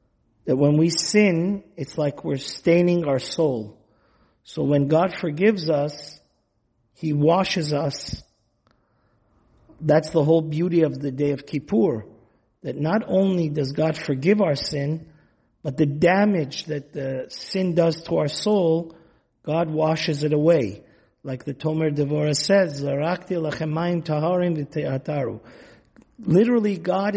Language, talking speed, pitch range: English, 125 wpm, 140-170 Hz